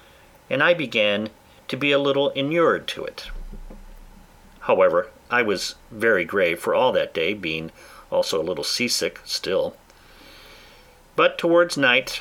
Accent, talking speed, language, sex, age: American, 140 wpm, English, male, 50-69